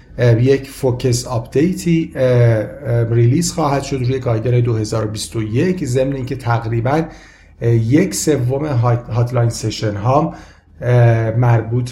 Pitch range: 115-140 Hz